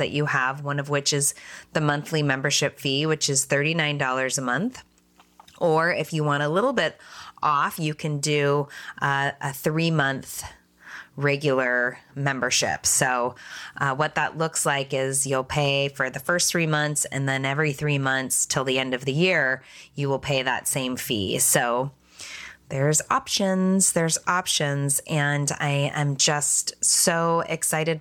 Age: 20-39